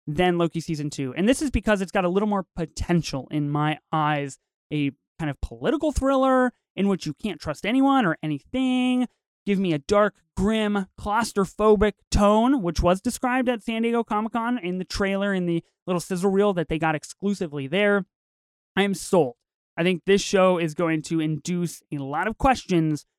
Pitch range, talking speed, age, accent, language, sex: 160-210 Hz, 185 wpm, 30-49, American, English, male